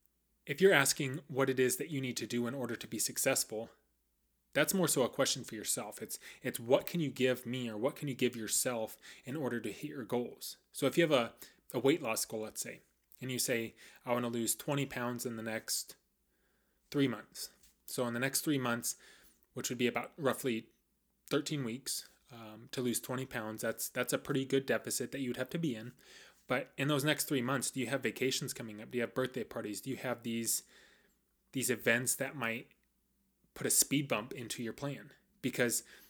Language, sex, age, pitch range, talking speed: English, male, 20-39, 115-140 Hz, 215 wpm